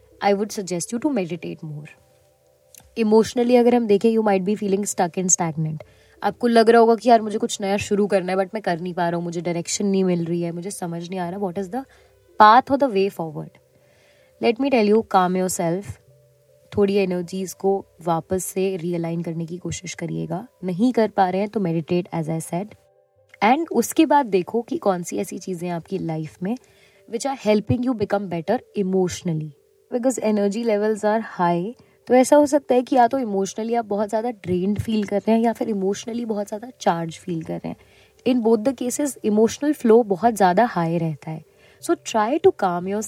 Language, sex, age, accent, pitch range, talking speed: Hindi, female, 20-39, native, 175-230 Hz, 210 wpm